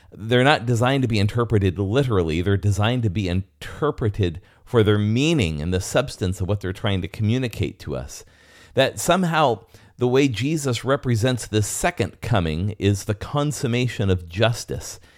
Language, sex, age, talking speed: English, male, 40-59, 160 wpm